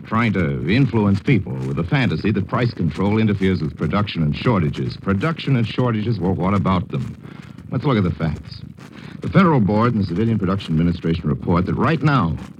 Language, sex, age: English, male, 60-79